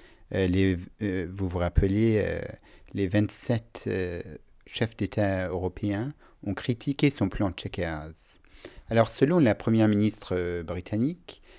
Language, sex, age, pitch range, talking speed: French, male, 50-69, 90-115 Hz, 120 wpm